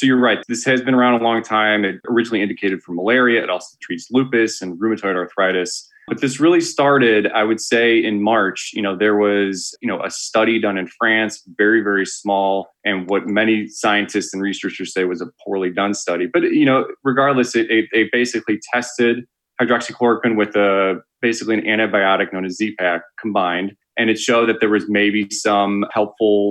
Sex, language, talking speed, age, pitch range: male, English, 195 wpm, 20-39, 95-115 Hz